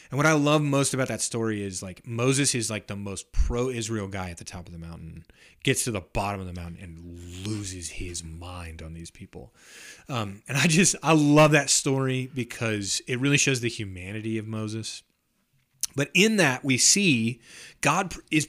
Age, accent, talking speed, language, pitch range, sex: 30-49, American, 195 wpm, English, 100-135 Hz, male